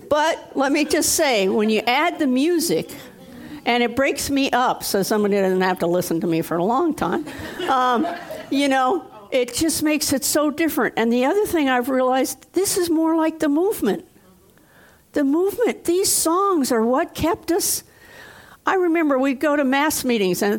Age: 60-79